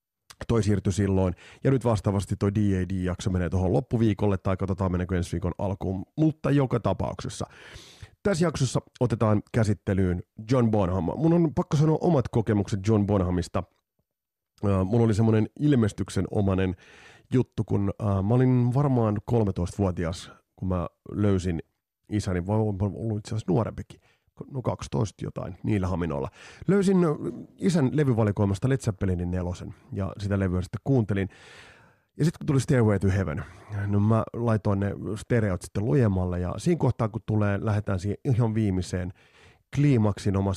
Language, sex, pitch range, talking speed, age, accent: Finnish, male, 95-115 Hz, 135 wpm, 30-49, native